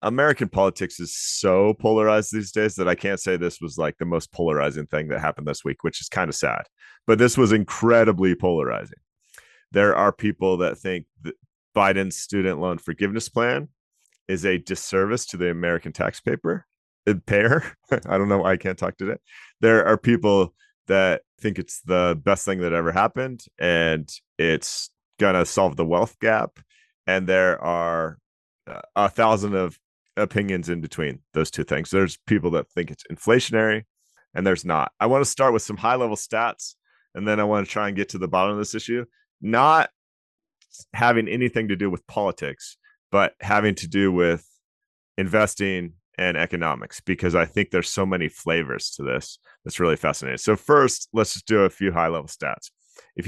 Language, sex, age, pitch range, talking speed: English, male, 30-49, 90-110 Hz, 180 wpm